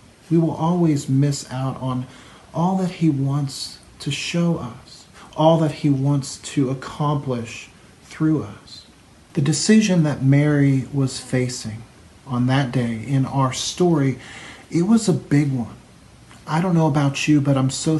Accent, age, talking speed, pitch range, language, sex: American, 40-59, 155 wpm, 125-150 Hz, English, male